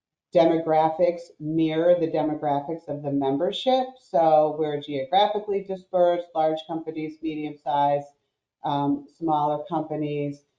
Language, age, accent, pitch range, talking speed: English, 40-59, American, 145-170 Hz, 100 wpm